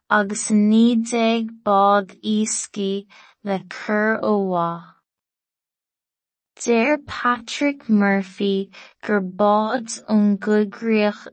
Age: 20-39